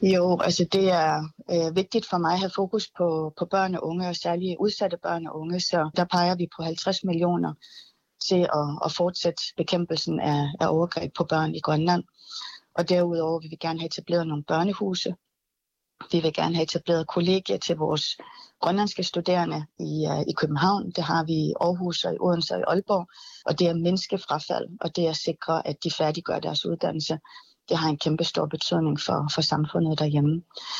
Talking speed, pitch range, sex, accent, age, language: 195 wpm, 160-185 Hz, female, native, 30-49, Danish